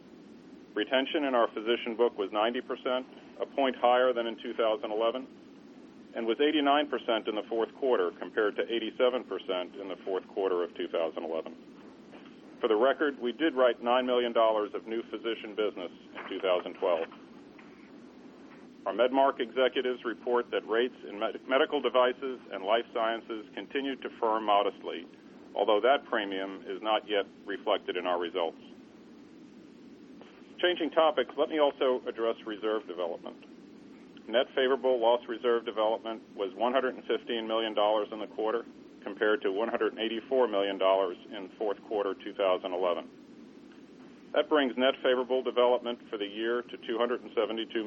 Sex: male